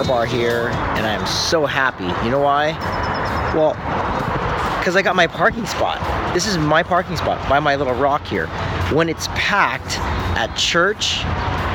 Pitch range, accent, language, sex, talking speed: 105-155 Hz, American, English, male, 165 wpm